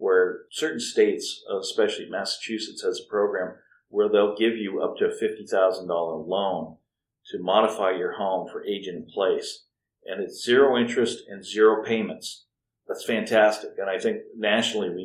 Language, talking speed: English, 155 wpm